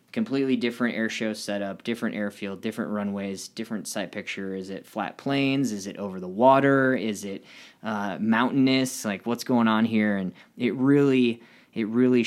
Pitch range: 95-120 Hz